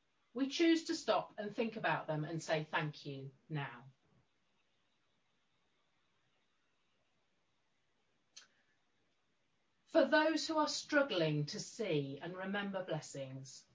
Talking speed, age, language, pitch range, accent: 100 wpm, 40-59, English, 155-230 Hz, British